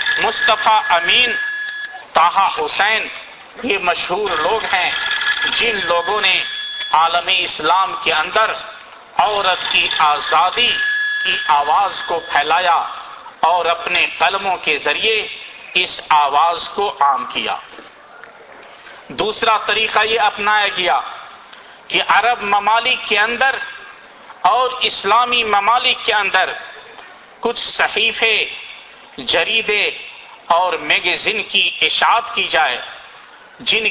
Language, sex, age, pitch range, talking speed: Urdu, male, 50-69, 185-280 Hz, 100 wpm